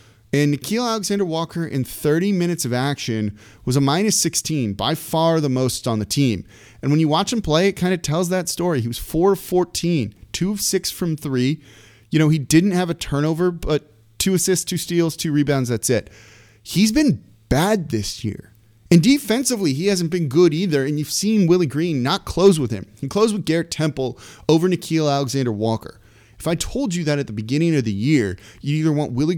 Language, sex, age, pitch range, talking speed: English, male, 30-49, 115-180 Hz, 200 wpm